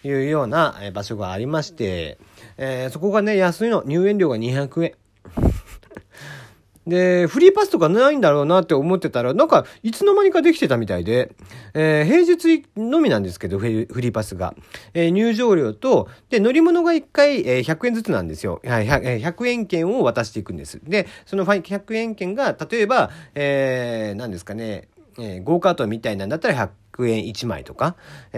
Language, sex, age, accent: Japanese, male, 40-59, native